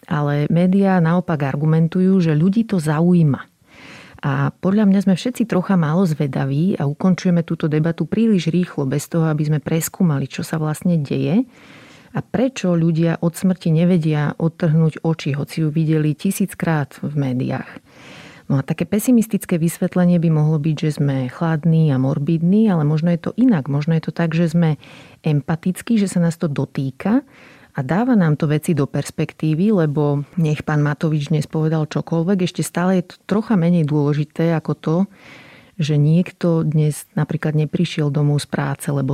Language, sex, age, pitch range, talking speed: Slovak, female, 40-59, 150-180 Hz, 165 wpm